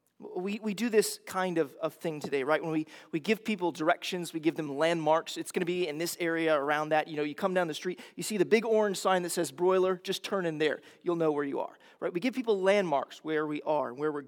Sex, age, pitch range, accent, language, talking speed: male, 30-49, 155-200 Hz, American, English, 275 wpm